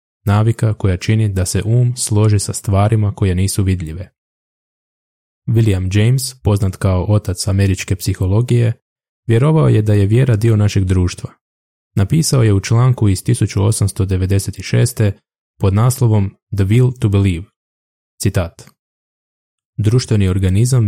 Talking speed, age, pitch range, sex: 120 wpm, 20-39, 95-115 Hz, male